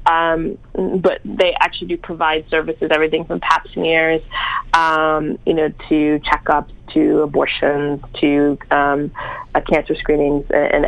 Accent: American